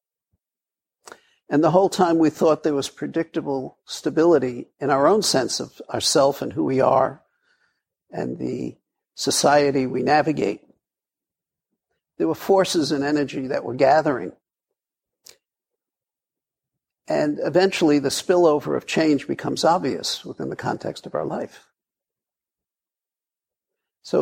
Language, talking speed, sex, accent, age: English, 120 wpm, male, American, 60-79